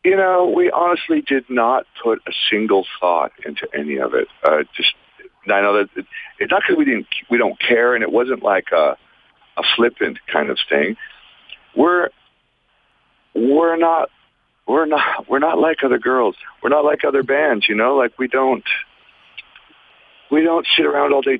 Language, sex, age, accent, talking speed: English, male, 50-69, American, 175 wpm